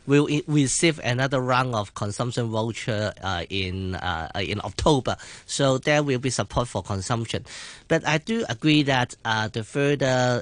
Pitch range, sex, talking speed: 105-130 Hz, male, 155 wpm